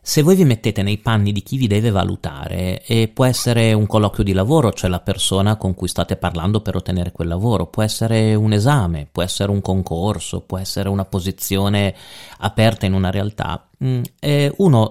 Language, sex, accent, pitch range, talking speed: Italian, male, native, 95-120 Hz, 190 wpm